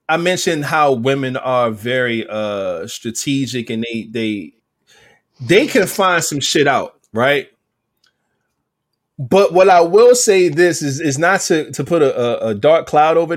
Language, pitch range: English, 135-190 Hz